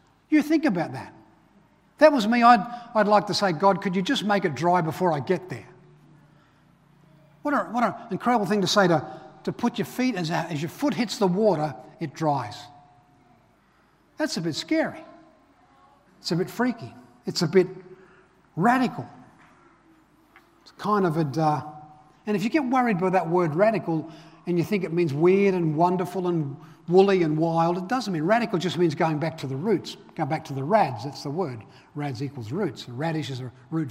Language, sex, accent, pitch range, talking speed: English, male, Australian, 160-210 Hz, 195 wpm